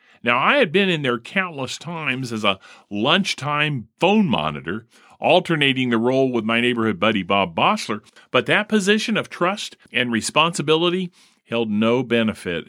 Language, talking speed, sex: English, 150 wpm, male